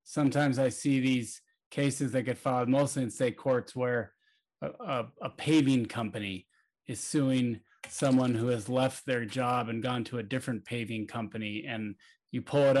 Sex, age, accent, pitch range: male, 30-49, American, 120-140 Hz